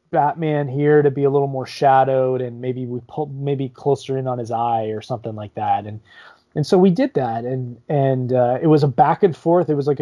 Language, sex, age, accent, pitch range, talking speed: English, male, 20-39, American, 120-150 Hz, 240 wpm